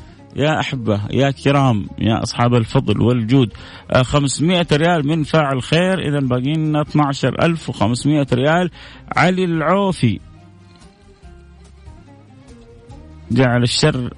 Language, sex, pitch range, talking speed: Arabic, male, 110-150 Hz, 95 wpm